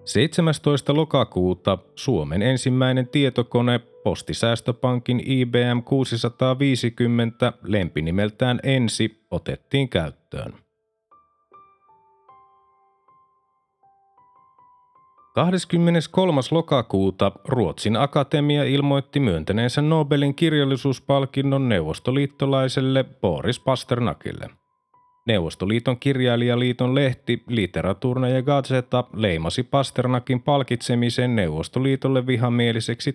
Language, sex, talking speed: Finnish, male, 60 wpm